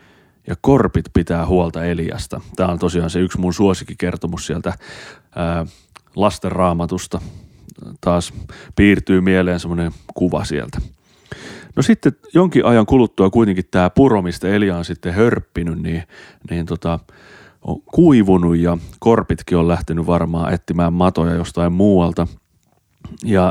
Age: 30-49